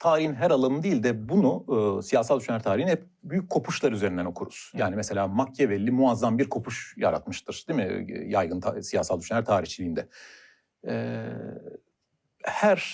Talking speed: 150 wpm